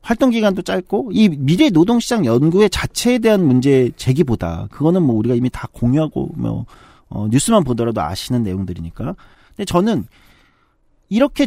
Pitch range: 125-205 Hz